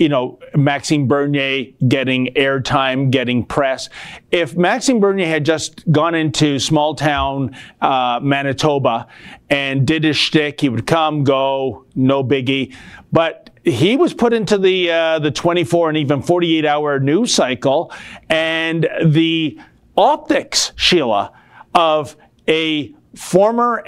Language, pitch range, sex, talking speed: English, 135-170 Hz, male, 125 wpm